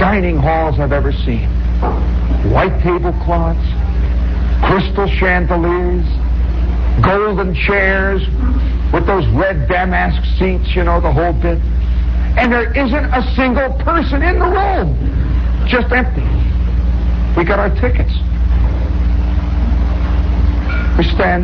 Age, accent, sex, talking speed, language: 60-79, American, male, 105 wpm, English